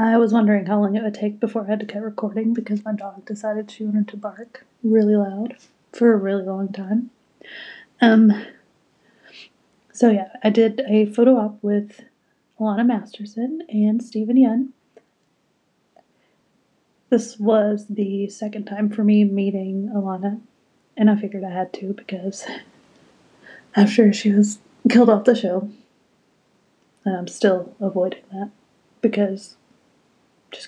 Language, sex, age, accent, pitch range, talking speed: English, female, 30-49, American, 205-235 Hz, 140 wpm